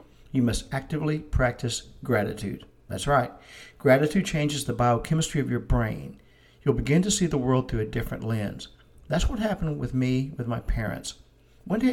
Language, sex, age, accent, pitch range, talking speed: English, male, 50-69, American, 115-150 Hz, 170 wpm